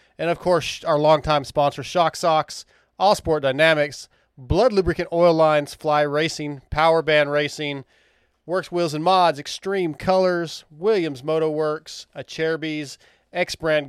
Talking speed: 135 wpm